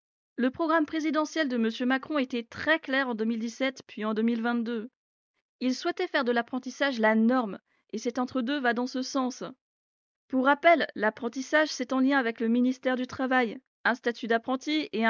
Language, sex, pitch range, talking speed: French, female, 230-280 Hz, 170 wpm